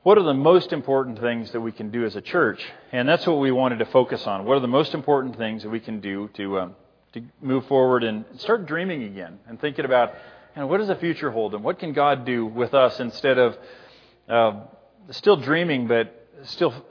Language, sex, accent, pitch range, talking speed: English, male, American, 115-150 Hz, 225 wpm